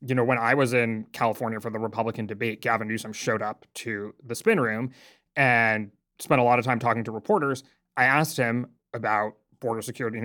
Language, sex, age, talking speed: English, male, 30-49, 205 wpm